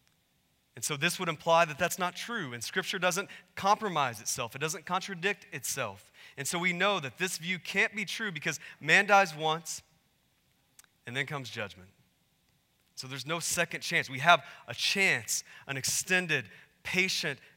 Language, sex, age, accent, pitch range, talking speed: English, male, 30-49, American, 130-170 Hz, 165 wpm